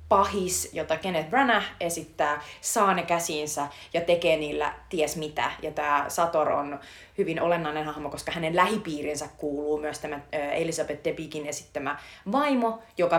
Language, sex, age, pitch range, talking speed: Finnish, female, 30-49, 155-195 Hz, 135 wpm